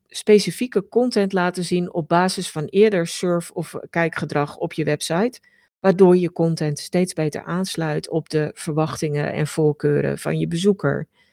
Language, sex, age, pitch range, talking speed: Dutch, female, 50-69, 160-210 Hz, 150 wpm